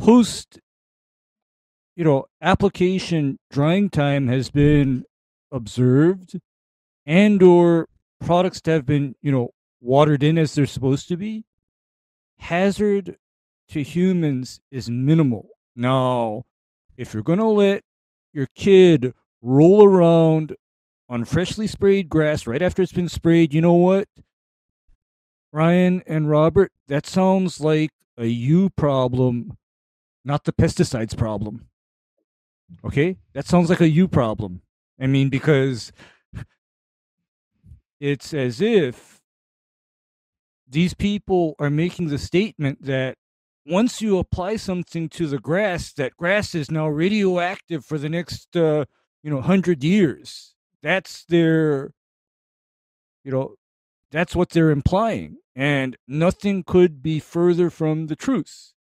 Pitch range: 125-180 Hz